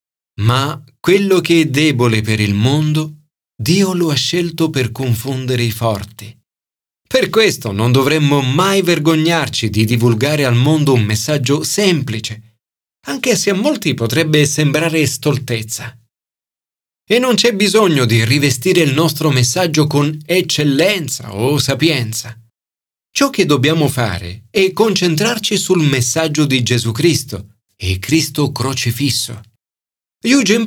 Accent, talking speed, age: native, 125 wpm, 40-59